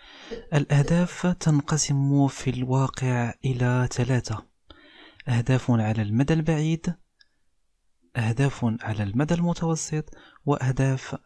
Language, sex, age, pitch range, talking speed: Arabic, male, 40-59, 120-145 Hz, 80 wpm